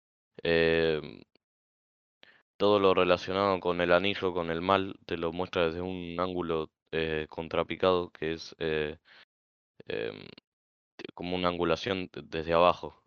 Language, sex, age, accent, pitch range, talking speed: Spanish, male, 20-39, Argentinian, 80-95 Hz, 125 wpm